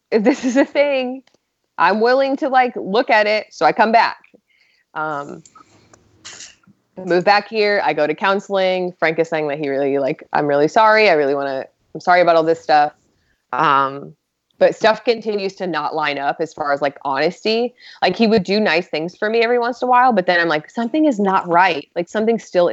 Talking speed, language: 215 wpm, English